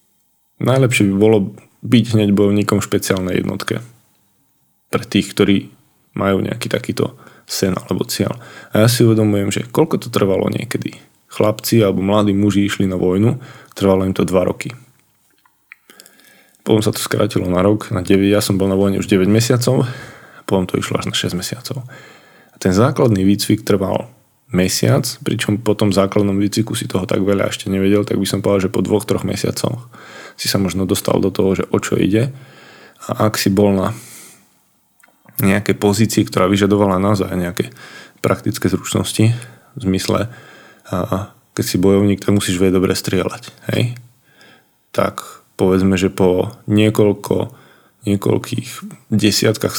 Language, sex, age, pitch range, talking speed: Slovak, male, 20-39, 95-110 Hz, 155 wpm